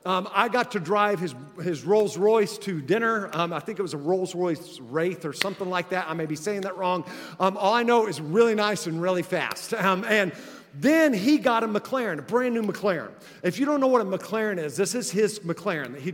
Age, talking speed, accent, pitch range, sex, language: 40-59, 240 wpm, American, 180-235 Hz, male, English